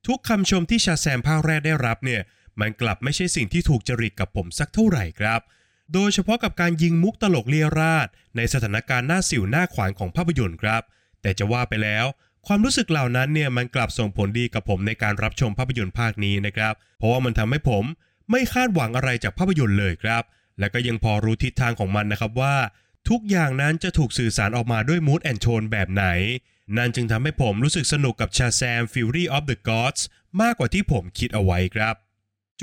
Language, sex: Thai, male